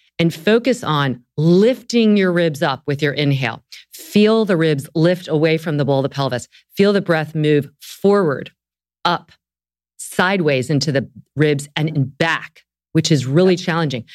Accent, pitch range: American, 140-175 Hz